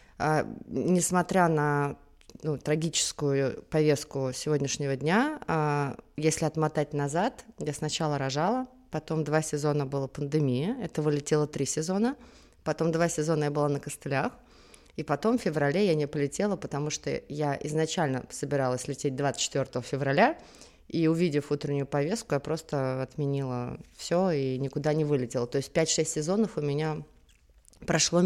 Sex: female